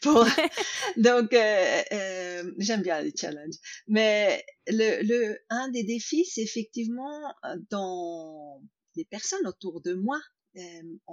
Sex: female